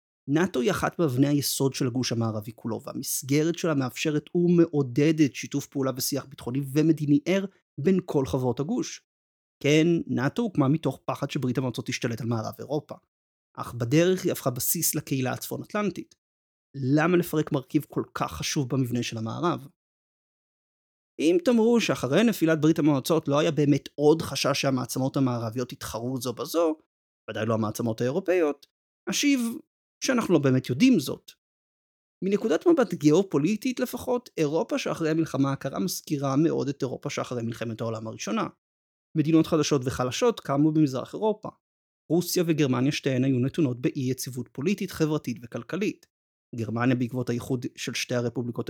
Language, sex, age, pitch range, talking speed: Hebrew, male, 30-49, 125-165 Hz, 140 wpm